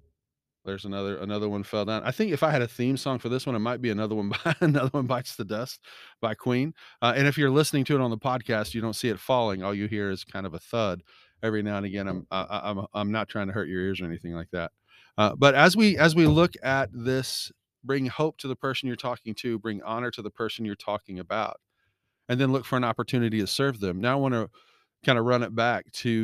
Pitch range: 100-125 Hz